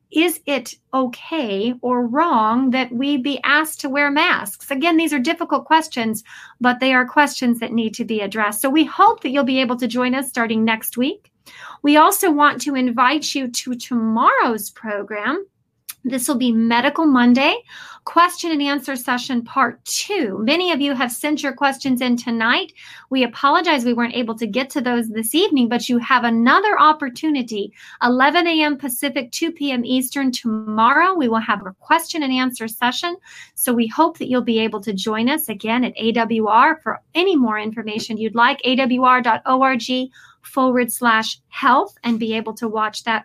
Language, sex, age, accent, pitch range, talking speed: English, female, 40-59, American, 230-295 Hz, 180 wpm